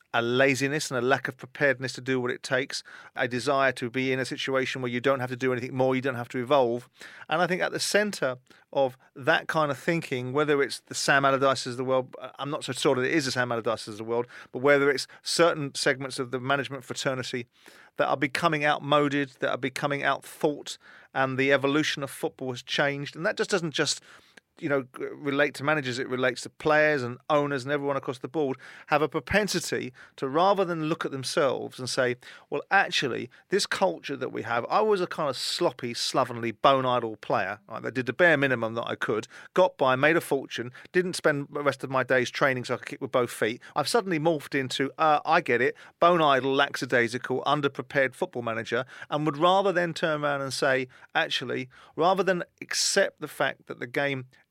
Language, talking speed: English, 220 wpm